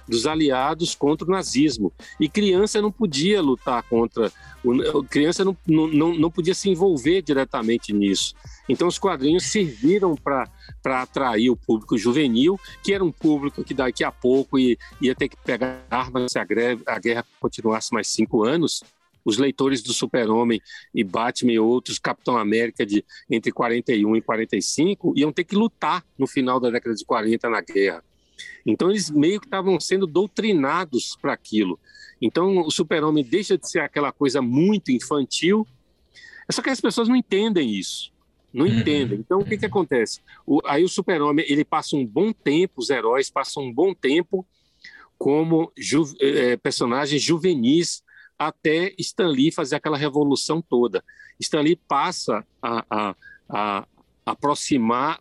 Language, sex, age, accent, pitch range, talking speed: Portuguese, male, 50-69, Brazilian, 125-195 Hz, 160 wpm